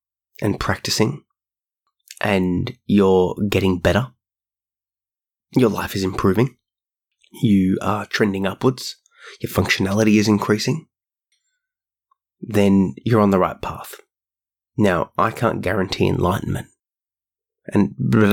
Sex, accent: male, Australian